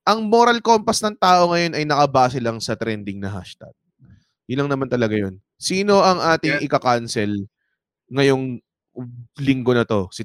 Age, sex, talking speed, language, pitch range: 20-39, male, 150 wpm, English, 120-180 Hz